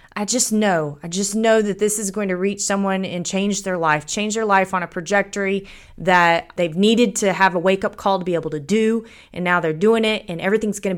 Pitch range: 170-210 Hz